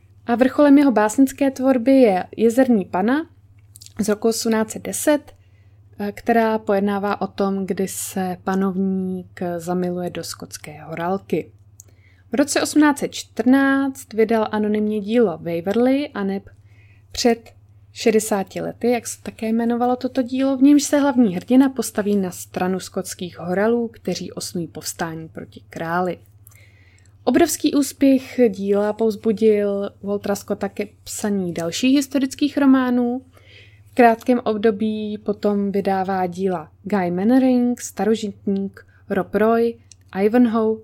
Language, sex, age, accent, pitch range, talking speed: Czech, female, 20-39, native, 175-235 Hz, 110 wpm